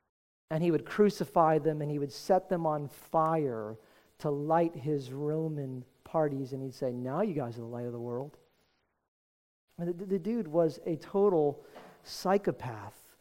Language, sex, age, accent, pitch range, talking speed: English, male, 40-59, American, 155-205 Hz, 170 wpm